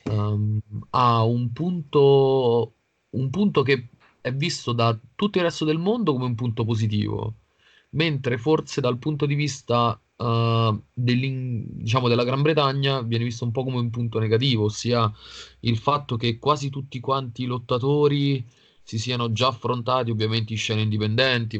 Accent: native